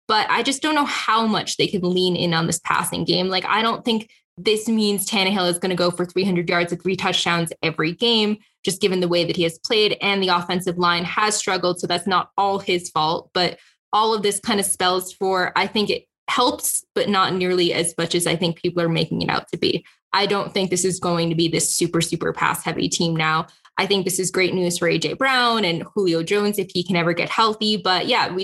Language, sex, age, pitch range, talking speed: English, female, 10-29, 175-205 Hz, 245 wpm